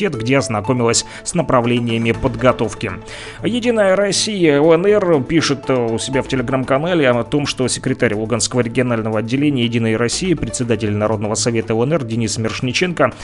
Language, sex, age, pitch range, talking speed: Russian, male, 30-49, 115-145 Hz, 125 wpm